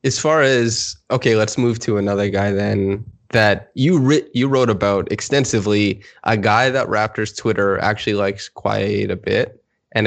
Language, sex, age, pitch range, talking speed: English, male, 20-39, 100-120 Hz, 165 wpm